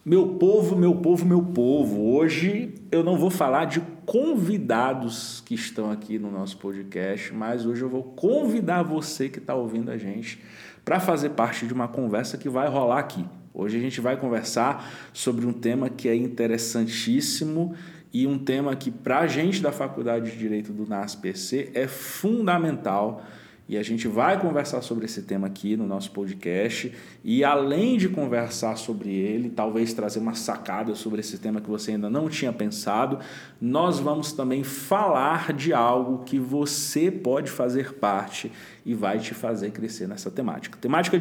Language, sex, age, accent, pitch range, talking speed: Portuguese, male, 40-59, Brazilian, 110-160 Hz, 170 wpm